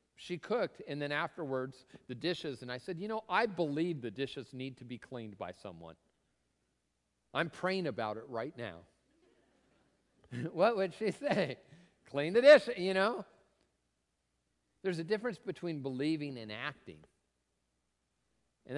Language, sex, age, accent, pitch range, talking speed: English, male, 50-69, American, 110-175 Hz, 145 wpm